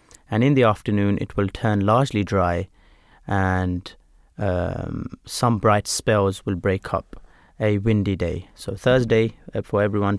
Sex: male